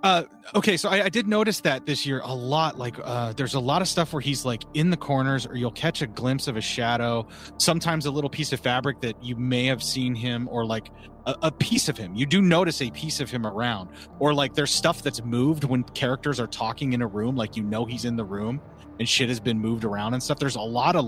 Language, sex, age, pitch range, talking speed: English, male, 30-49, 115-145 Hz, 260 wpm